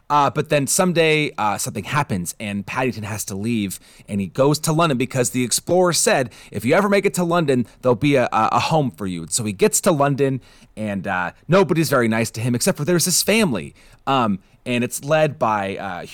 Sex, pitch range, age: male, 115-165 Hz, 30-49